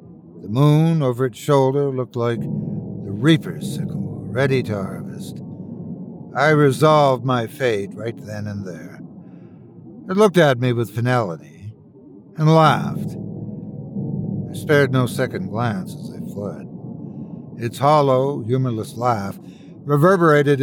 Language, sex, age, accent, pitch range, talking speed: English, male, 60-79, American, 115-155 Hz, 120 wpm